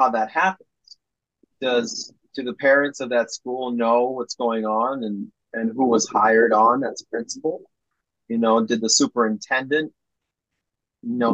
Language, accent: English, American